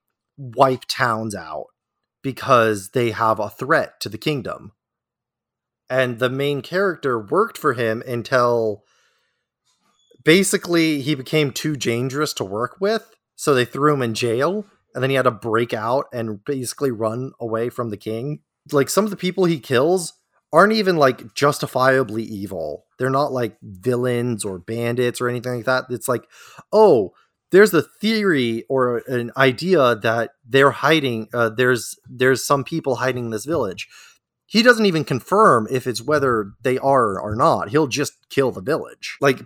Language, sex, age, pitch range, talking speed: English, male, 20-39, 120-150 Hz, 160 wpm